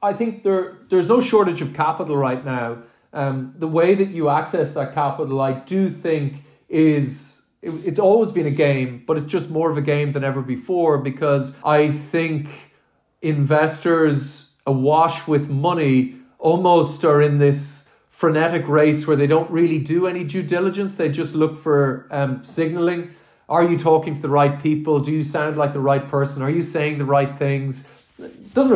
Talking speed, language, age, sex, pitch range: 180 wpm, English, 30-49, male, 135-160 Hz